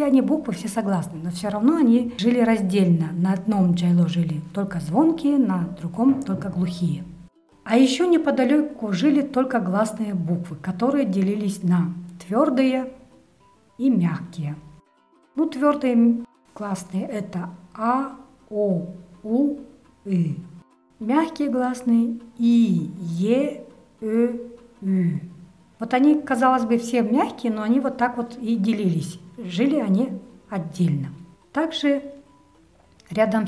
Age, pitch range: 50-69, 185-255 Hz